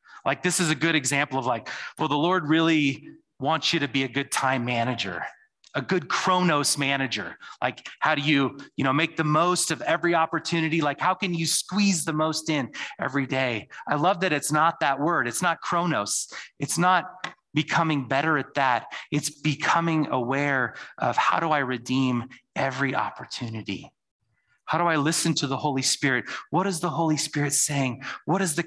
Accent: American